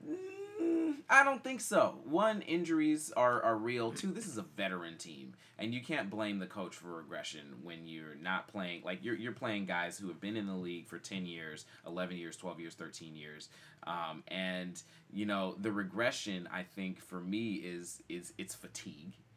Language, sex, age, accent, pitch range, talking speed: English, male, 30-49, American, 90-120 Hz, 190 wpm